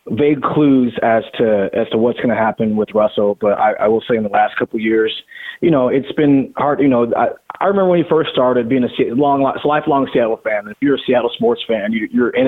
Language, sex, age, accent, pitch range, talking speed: English, male, 20-39, American, 115-145 Hz, 260 wpm